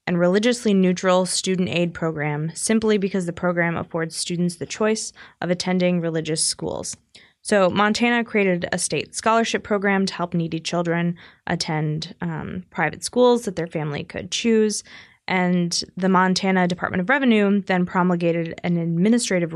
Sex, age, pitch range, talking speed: female, 20-39, 170-200 Hz, 145 wpm